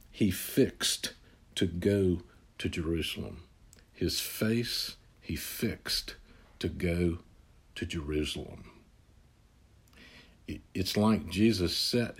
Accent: American